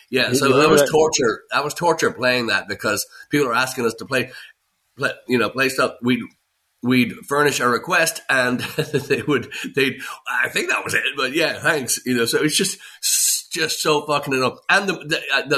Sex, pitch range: male, 115-150 Hz